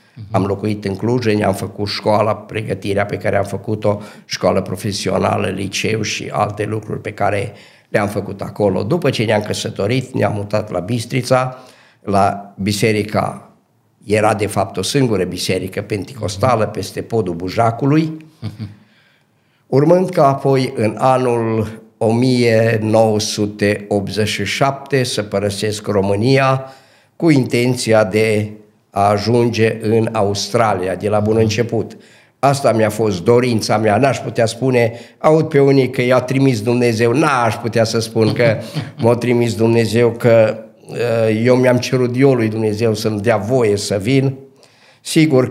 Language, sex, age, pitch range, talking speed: Romanian, male, 50-69, 105-130 Hz, 130 wpm